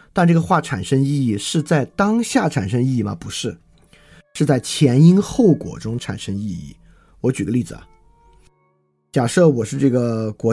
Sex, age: male, 20-39